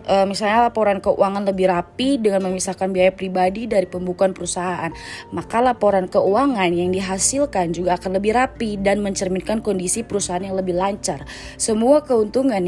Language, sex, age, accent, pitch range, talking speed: Indonesian, female, 20-39, native, 185-230 Hz, 140 wpm